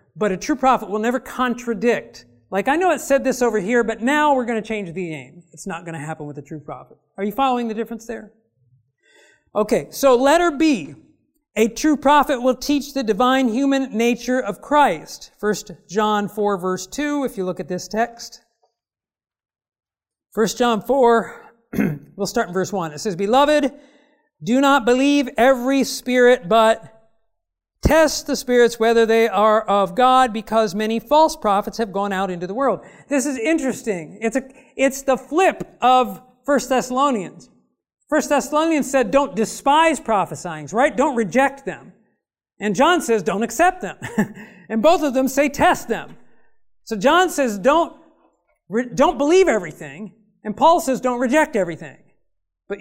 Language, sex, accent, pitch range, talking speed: English, male, American, 210-275 Hz, 170 wpm